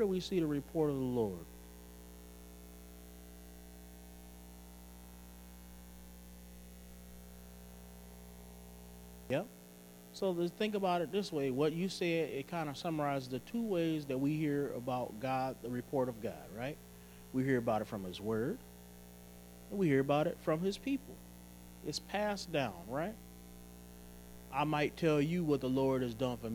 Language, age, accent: English, 30-49, American